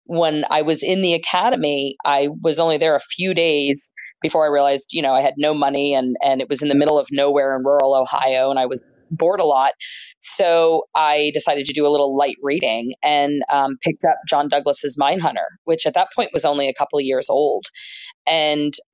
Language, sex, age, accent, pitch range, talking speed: English, female, 20-39, American, 140-160 Hz, 215 wpm